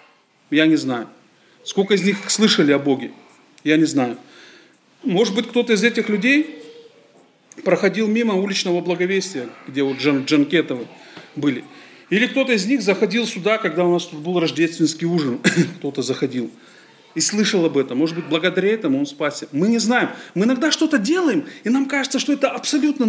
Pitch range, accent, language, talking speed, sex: 150-225 Hz, native, Russian, 165 wpm, male